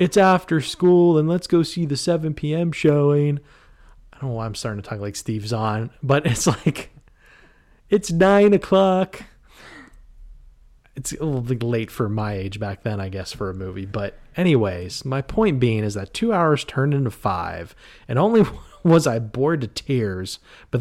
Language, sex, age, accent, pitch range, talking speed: English, male, 30-49, American, 105-145 Hz, 180 wpm